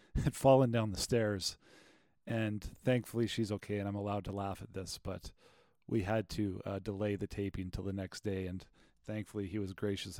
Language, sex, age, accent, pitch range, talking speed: English, male, 40-59, American, 100-120 Hz, 195 wpm